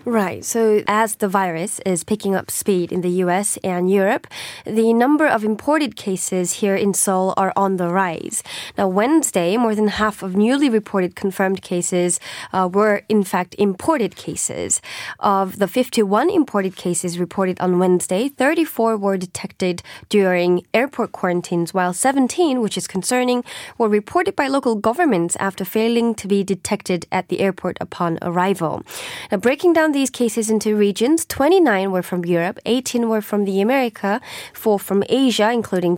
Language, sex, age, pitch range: Korean, female, 20-39, 185-235 Hz